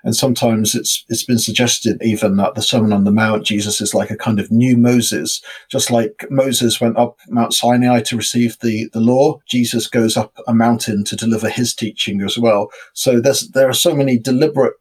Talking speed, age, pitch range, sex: 205 wpm, 40-59, 110-130 Hz, male